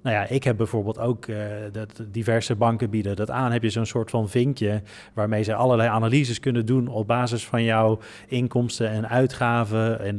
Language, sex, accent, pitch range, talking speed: Dutch, male, Dutch, 110-130 Hz, 195 wpm